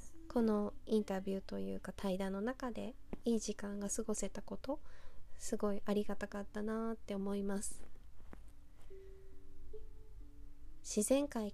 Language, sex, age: Japanese, female, 20-39